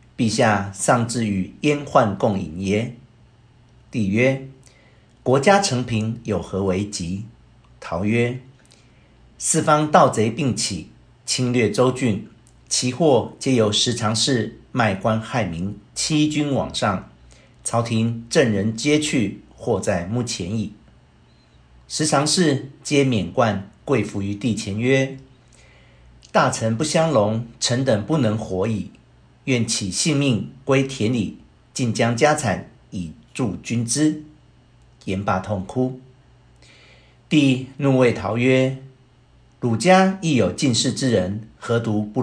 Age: 50-69